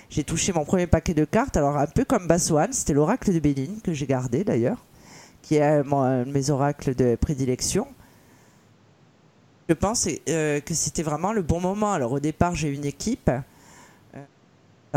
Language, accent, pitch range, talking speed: French, French, 145-185 Hz, 175 wpm